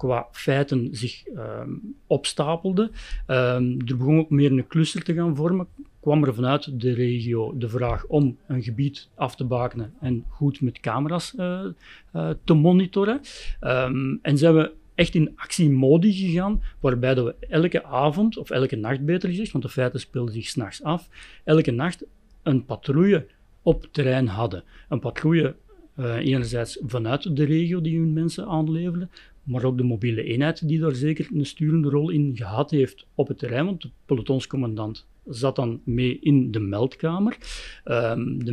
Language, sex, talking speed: Dutch, male, 165 wpm